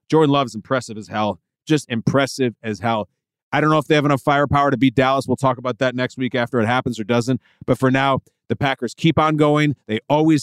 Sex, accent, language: male, American, English